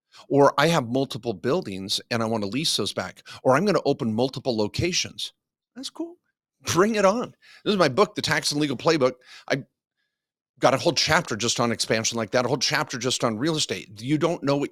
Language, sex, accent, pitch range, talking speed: English, male, American, 115-155 Hz, 220 wpm